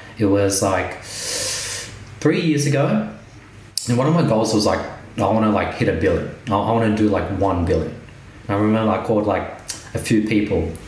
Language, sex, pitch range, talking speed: English, male, 100-120 Hz, 195 wpm